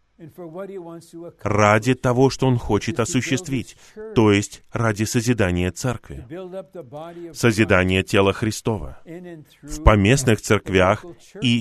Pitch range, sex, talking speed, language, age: 100-140 Hz, male, 95 wpm, Russian, 20-39